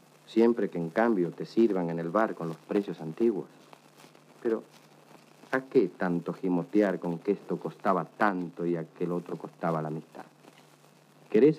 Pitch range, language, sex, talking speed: 85-105 Hz, Spanish, male, 155 wpm